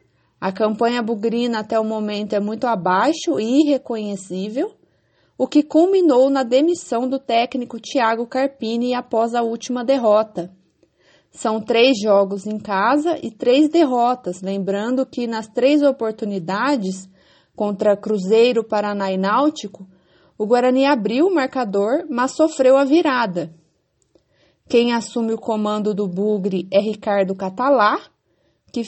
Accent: Brazilian